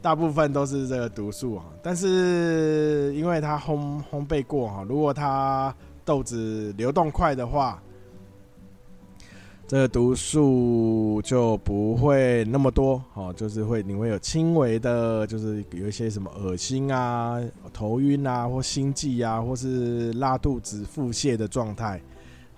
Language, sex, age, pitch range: Chinese, male, 20-39, 100-135 Hz